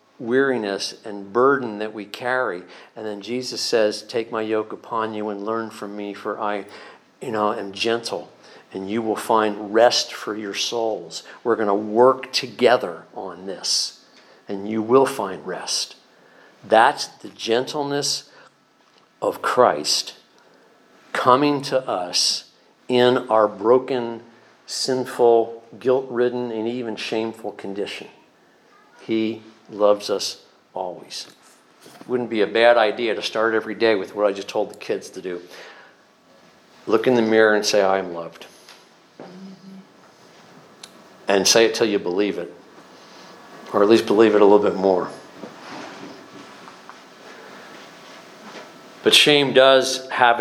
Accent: American